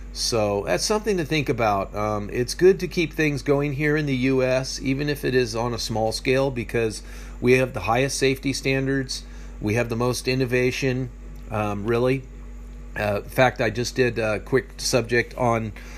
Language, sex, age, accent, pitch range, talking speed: English, male, 40-59, American, 100-135 Hz, 185 wpm